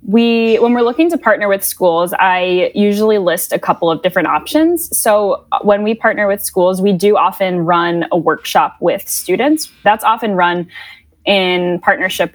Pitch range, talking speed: 165-205 Hz, 170 wpm